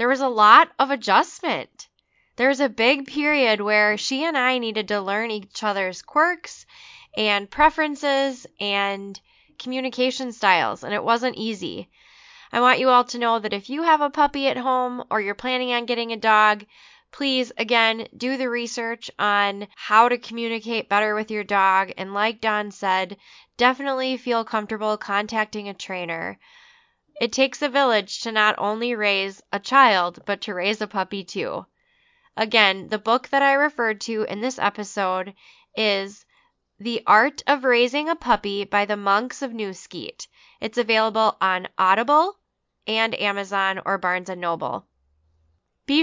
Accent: American